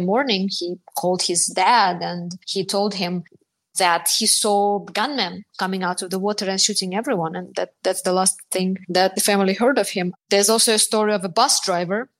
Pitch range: 185-225 Hz